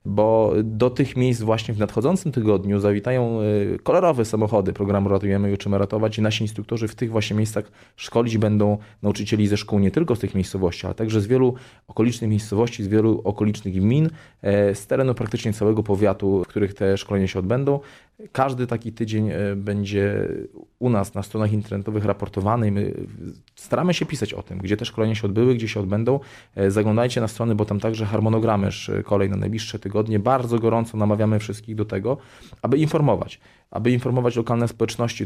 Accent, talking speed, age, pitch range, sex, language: native, 170 wpm, 20-39, 105-120 Hz, male, Polish